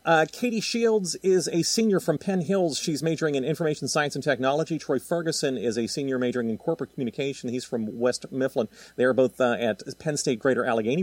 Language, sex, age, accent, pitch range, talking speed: English, male, 40-59, American, 125-175 Hz, 200 wpm